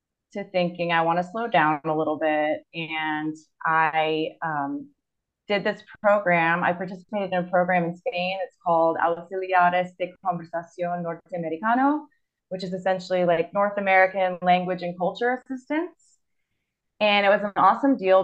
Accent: American